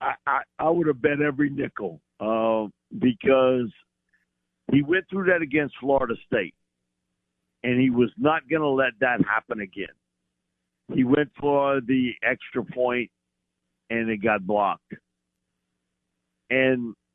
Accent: American